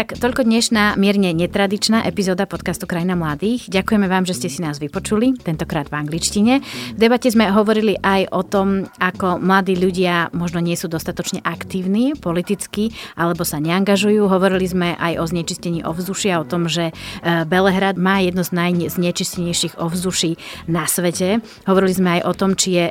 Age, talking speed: 30-49, 160 wpm